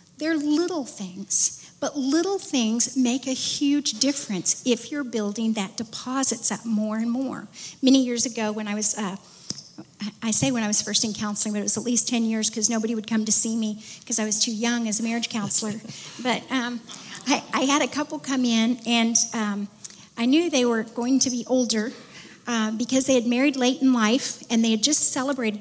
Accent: American